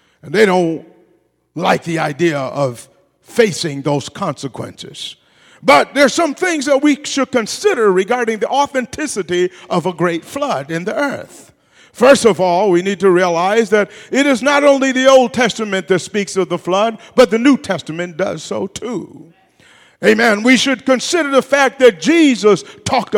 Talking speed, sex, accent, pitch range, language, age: 165 wpm, male, American, 190-255 Hz, English, 50-69